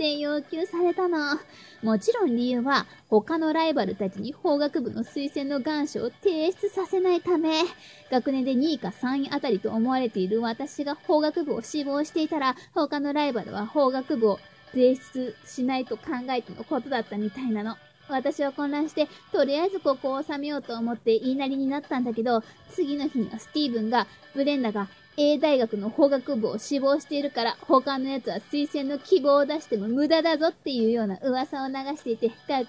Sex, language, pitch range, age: female, Japanese, 250-315 Hz, 20-39